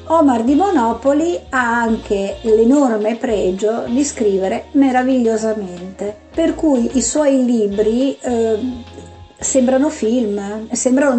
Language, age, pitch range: Italian, 50-69, 200-260 Hz